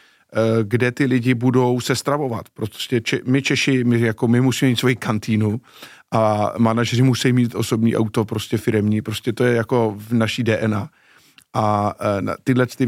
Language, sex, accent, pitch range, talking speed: Czech, male, native, 115-130 Hz, 160 wpm